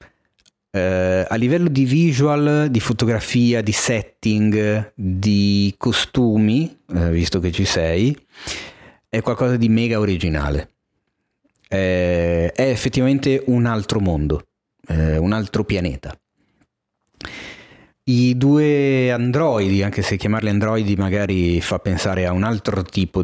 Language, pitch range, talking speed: Italian, 90-115 Hz, 105 wpm